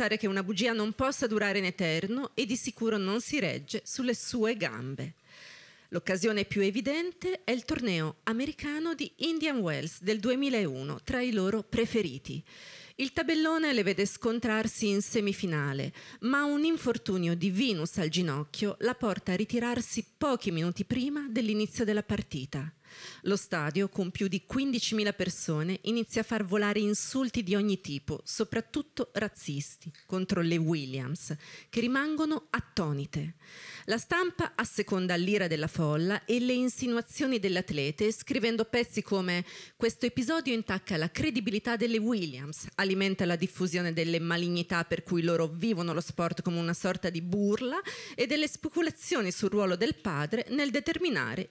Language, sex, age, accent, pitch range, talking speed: Italian, female, 40-59, native, 175-240 Hz, 145 wpm